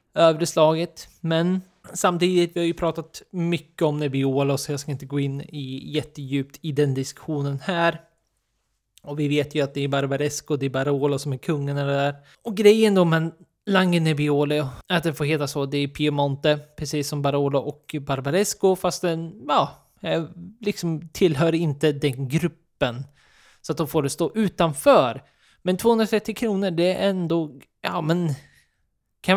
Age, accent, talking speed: 20-39, native, 165 wpm